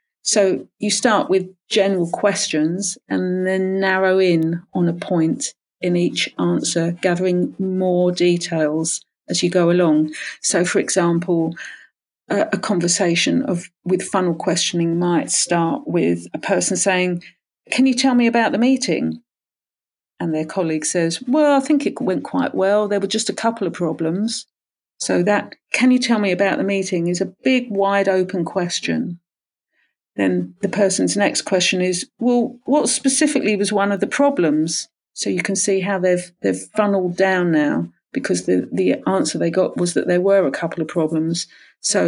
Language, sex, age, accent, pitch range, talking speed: English, female, 40-59, British, 175-220 Hz, 170 wpm